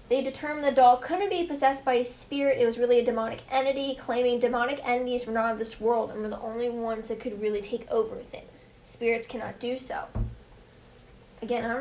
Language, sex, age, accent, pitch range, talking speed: English, female, 10-29, American, 240-275 Hz, 215 wpm